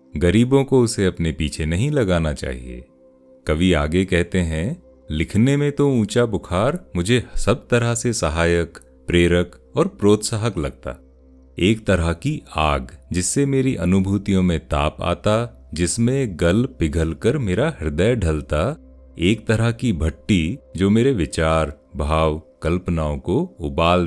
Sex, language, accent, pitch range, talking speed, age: male, Hindi, native, 75-110 Hz, 130 wpm, 40-59